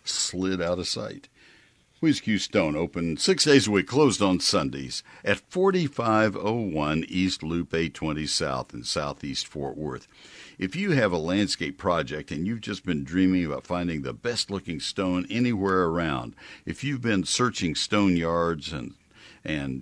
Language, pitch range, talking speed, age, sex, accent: English, 80-110 Hz, 155 wpm, 60-79, male, American